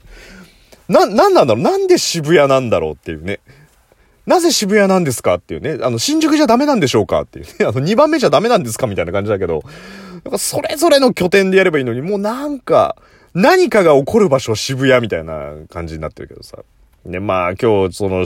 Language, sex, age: Japanese, male, 30-49